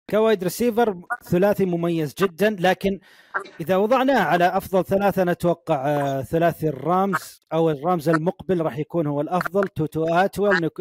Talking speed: 135 wpm